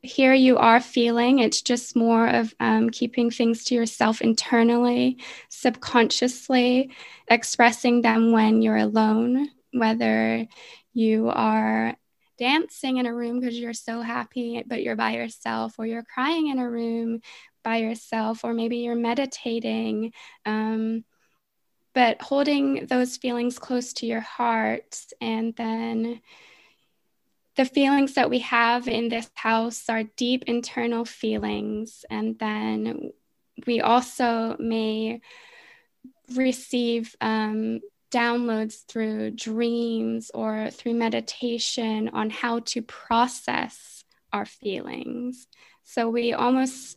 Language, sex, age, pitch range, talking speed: English, female, 20-39, 225-250 Hz, 120 wpm